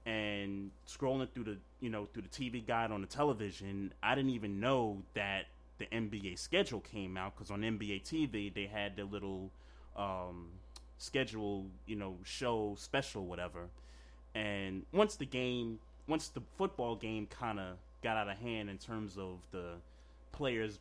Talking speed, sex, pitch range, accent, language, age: 165 wpm, male, 90-115 Hz, American, English, 30-49